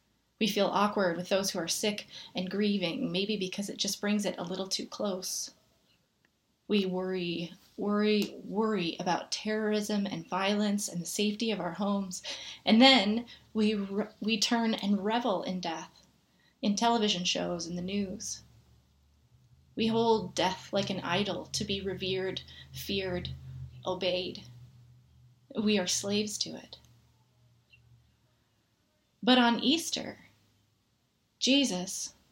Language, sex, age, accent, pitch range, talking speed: English, female, 20-39, American, 185-225 Hz, 130 wpm